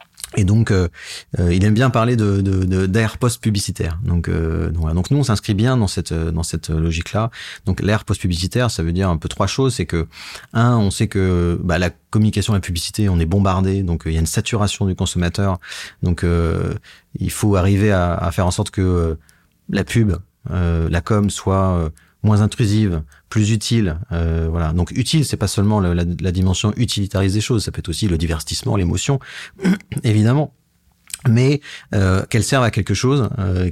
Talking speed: 200 wpm